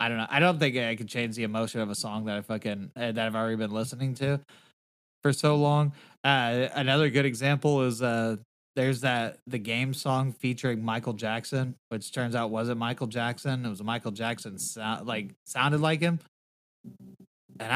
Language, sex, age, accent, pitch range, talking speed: English, male, 20-39, American, 110-145 Hz, 190 wpm